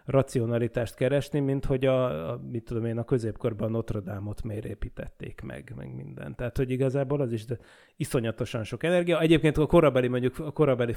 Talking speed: 175 wpm